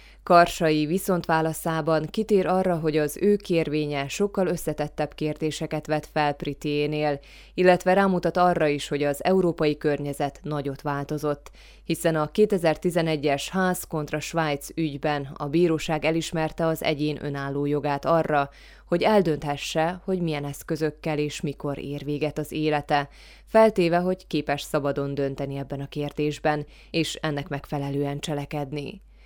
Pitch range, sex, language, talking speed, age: 145-165 Hz, female, Hungarian, 125 wpm, 20-39